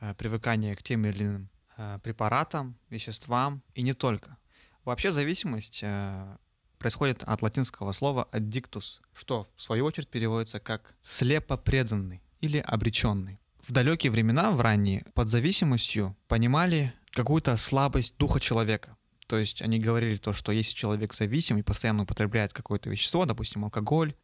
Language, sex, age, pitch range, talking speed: Russian, male, 20-39, 110-135 Hz, 135 wpm